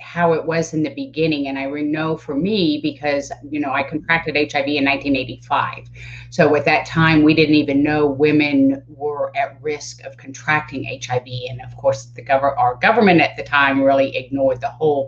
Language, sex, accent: English, female, American